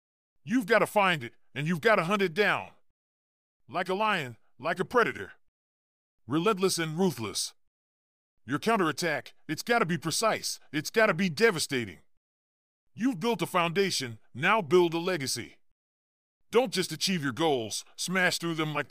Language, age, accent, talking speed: English, 40-59, American, 160 wpm